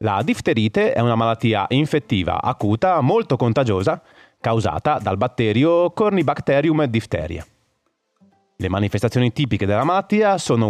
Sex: male